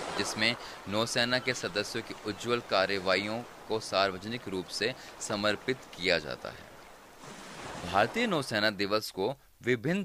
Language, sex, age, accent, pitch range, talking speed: Hindi, male, 30-49, native, 105-130 Hz, 115 wpm